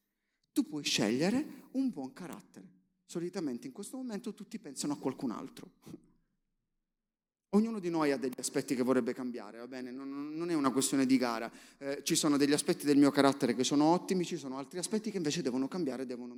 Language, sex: Italian, male